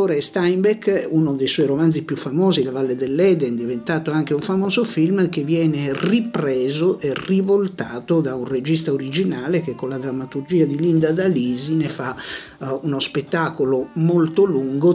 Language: Italian